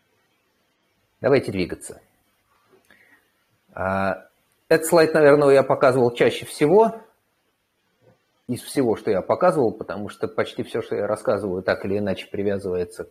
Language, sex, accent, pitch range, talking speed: Russian, male, native, 105-160 Hz, 115 wpm